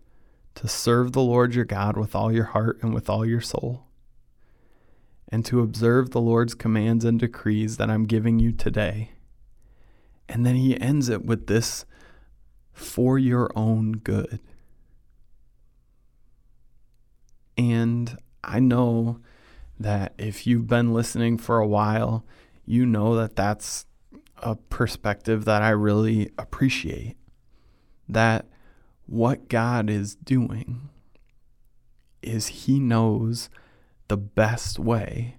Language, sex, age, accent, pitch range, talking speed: English, male, 30-49, American, 110-120 Hz, 120 wpm